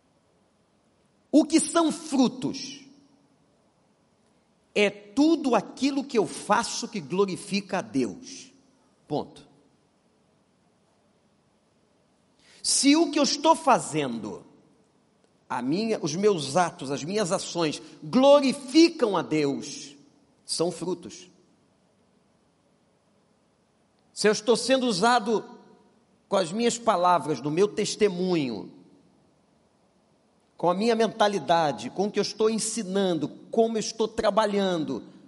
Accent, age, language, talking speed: Brazilian, 50-69, Portuguese, 100 wpm